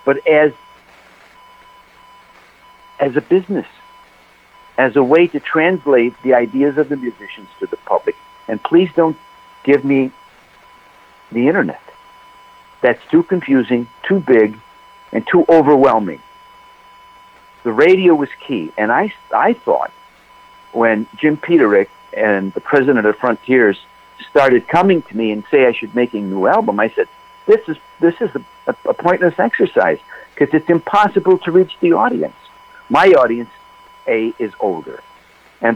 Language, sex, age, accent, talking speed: English, male, 60-79, American, 140 wpm